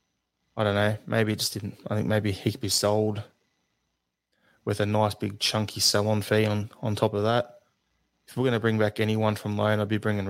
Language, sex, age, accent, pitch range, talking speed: English, male, 20-39, Australian, 100-115 Hz, 215 wpm